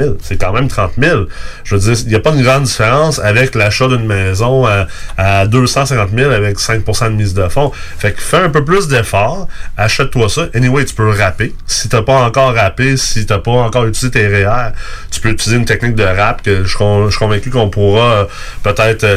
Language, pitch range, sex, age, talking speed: French, 105-130 Hz, male, 30-49, 220 wpm